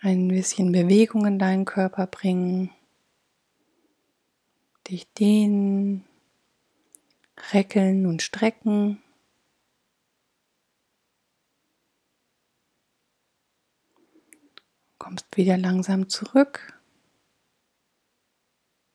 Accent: German